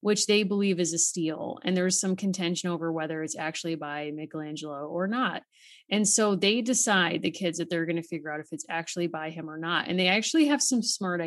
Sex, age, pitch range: female, 30-49, 165-200 Hz